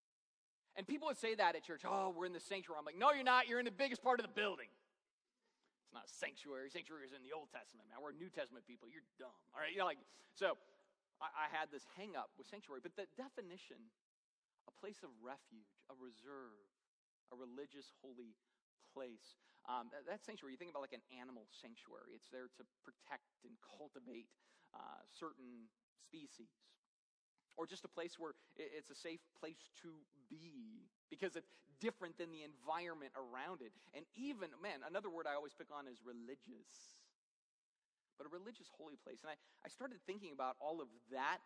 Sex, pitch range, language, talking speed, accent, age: male, 130-180 Hz, English, 195 wpm, American, 30-49